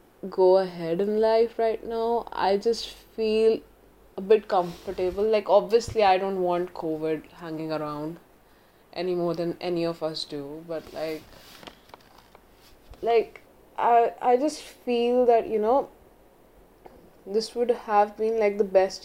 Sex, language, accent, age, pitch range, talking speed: female, English, Indian, 20-39, 175-220 Hz, 140 wpm